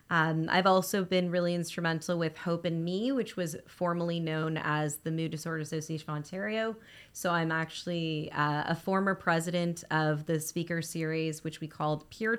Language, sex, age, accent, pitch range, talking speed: English, female, 20-39, American, 160-185 Hz, 175 wpm